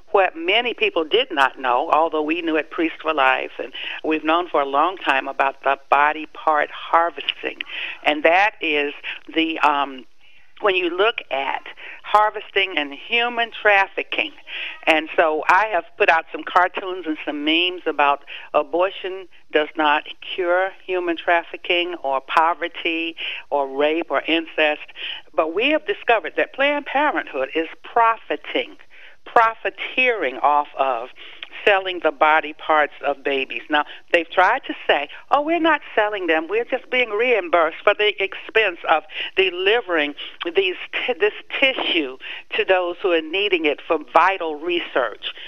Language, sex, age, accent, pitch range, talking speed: English, female, 60-79, American, 155-240 Hz, 150 wpm